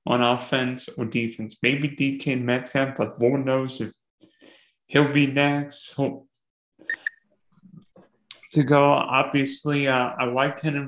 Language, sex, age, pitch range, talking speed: English, male, 30-49, 130-150 Hz, 125 wpm